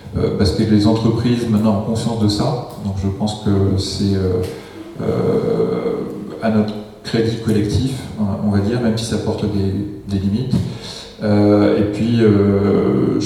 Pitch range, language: 105-120 Hz, French